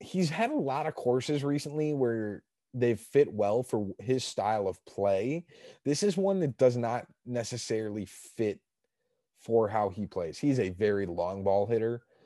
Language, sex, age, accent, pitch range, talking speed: English, male, 30-49, American, 110-150 Hz, 165 wpm